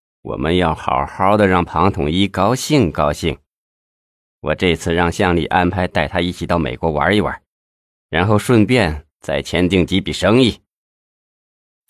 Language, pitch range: Chinese, 80-110 Hz